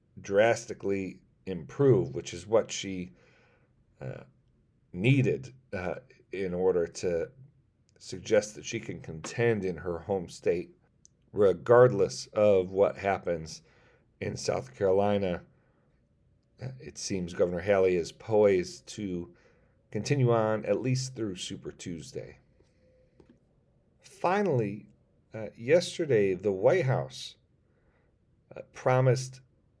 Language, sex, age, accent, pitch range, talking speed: English, male, 40-59, American, 95-130 Hz, 100 wpm